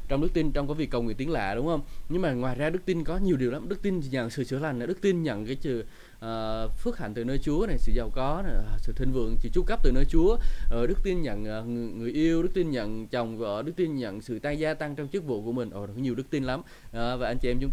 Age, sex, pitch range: 20-39, male, 115-150 Hz